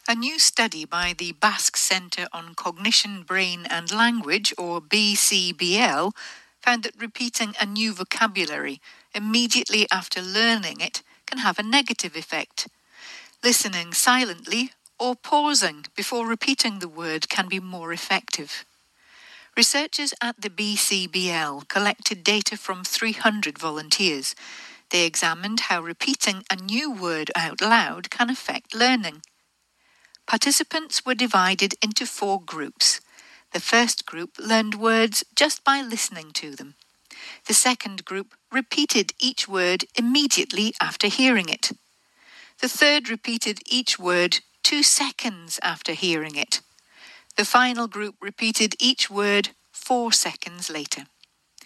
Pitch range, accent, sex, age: 180-240 Hz, British, female, 60-79